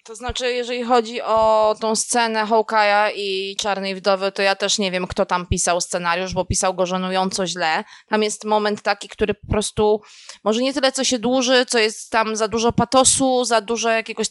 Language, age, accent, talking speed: Polish, 20-39, native, 195 wpm